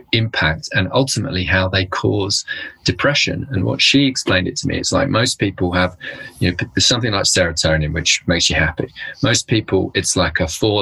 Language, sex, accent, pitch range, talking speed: English, male, British, 90-120 Hz, 195 wpm